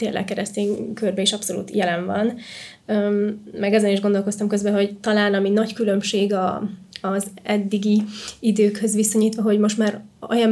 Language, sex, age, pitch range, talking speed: Hungarian, female, 20-39, 200-220 Hz, 150 wpm